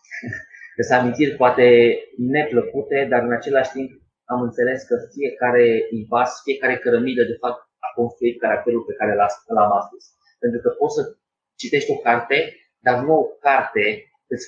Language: Romanian